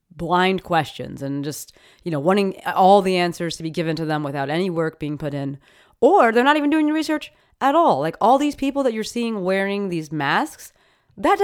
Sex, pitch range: female, 150-210 Hz